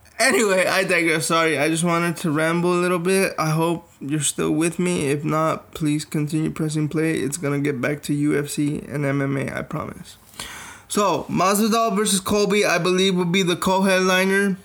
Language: English